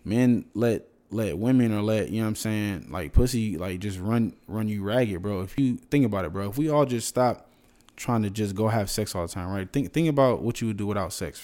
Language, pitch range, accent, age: English, 100-120 Hz, American, 20-39